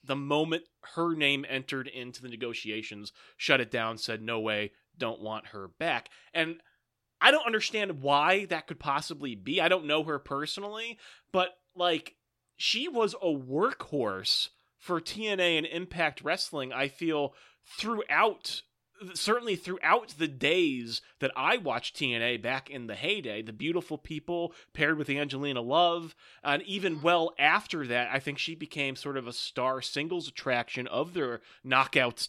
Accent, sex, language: American, male, English